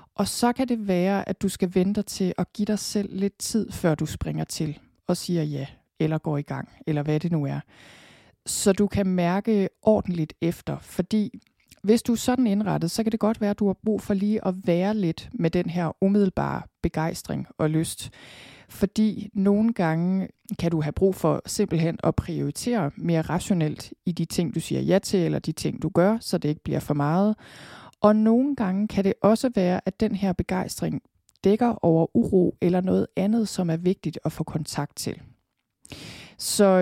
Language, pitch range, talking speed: Danish, 165-210 Hz, 195 wpm